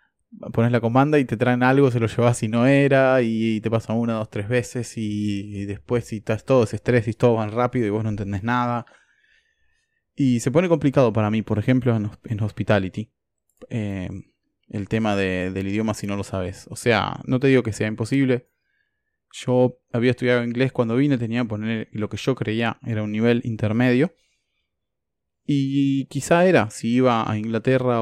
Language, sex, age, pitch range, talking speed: Spanish, male, 20-39, 105-130 Hz, 190 wpm